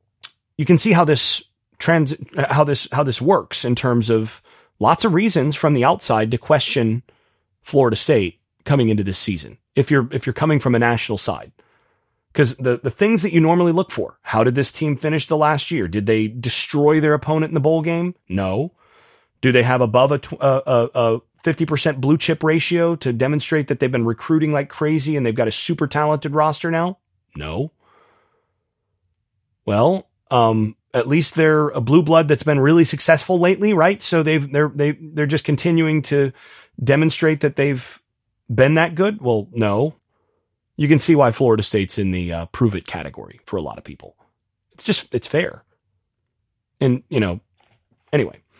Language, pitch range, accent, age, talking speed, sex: English, 115-160 Hz, American, 30-49, 185 wpm, male